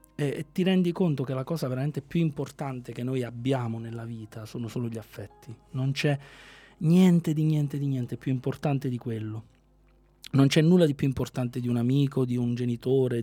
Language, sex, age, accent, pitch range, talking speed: Italian, male, 30-49, native, 120-150 Hz, 190 wpm